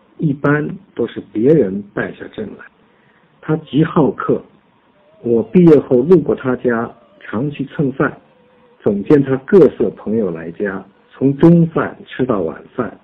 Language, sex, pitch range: Chinese, male, 115-165 Hz